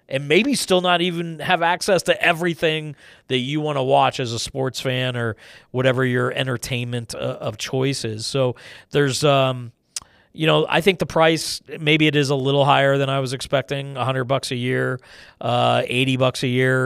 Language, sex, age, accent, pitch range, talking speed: English, male, 40-59, American, 125-145 Hz, 190 wpm